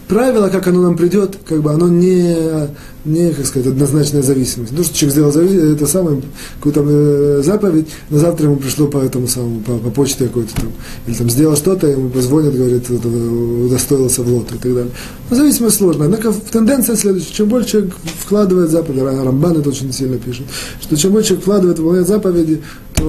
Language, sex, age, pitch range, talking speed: Russian, male, 20-39, 130-175 Hz, 180 wpm